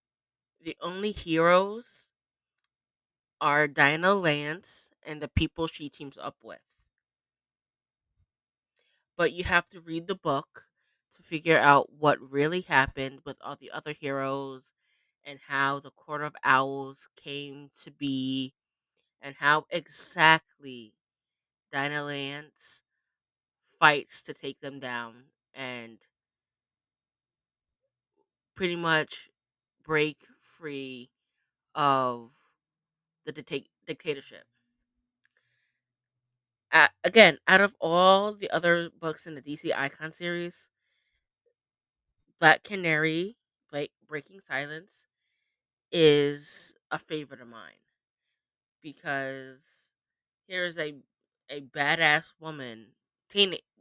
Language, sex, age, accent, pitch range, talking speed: English, female, 20-39, American, 135-165 Hz, 95 wpm